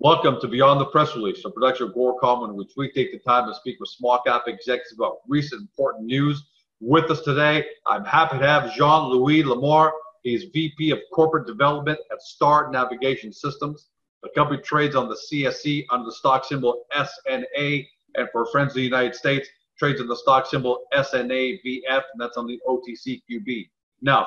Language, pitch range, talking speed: English, 125-150 Hz, 185 wpm